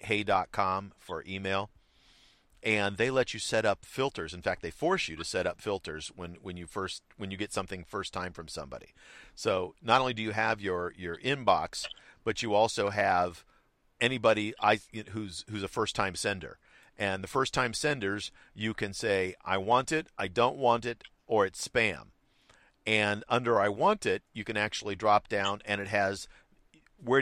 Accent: American